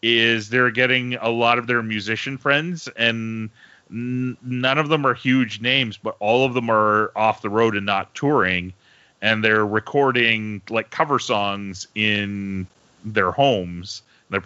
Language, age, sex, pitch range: English, 30-49, male, 100-140 Hz